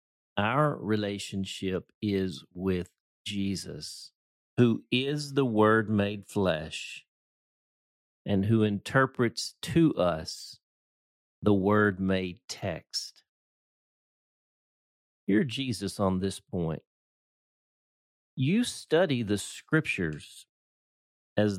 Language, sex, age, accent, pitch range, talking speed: English, male, 50-69, American, 100-140 Hz, 85 wpm